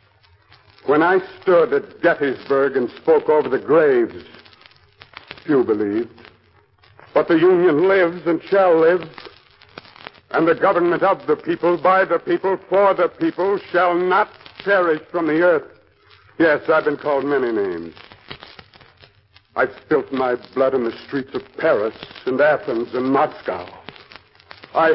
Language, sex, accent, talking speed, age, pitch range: English, male, American, 135 wpm, 60-79, 140-200 Hz